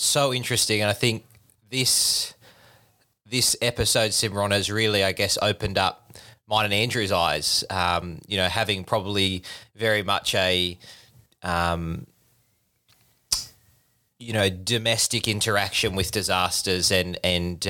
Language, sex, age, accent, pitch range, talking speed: English, male, 20-39, Australian, 95-115 Hz, 120 wpm